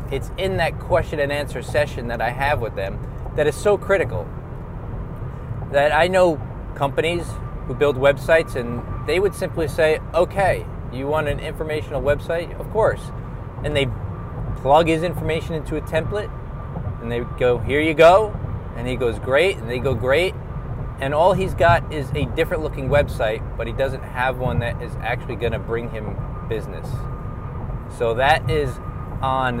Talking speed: 170 wpm